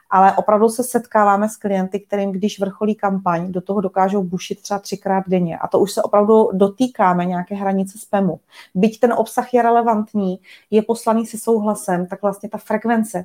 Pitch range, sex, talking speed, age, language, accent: 190-230 Hz, female, 175 wpm, 30-49, Czech, native